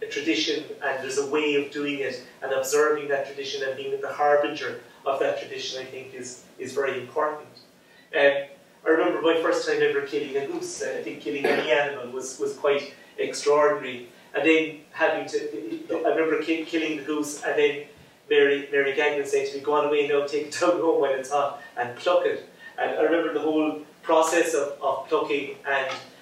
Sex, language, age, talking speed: male, English, 30-49, 195 wpm